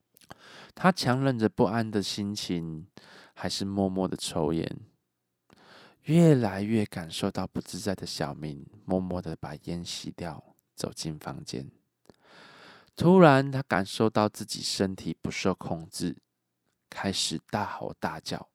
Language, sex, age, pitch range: Chinese, male, 20-39, 90-125 Hz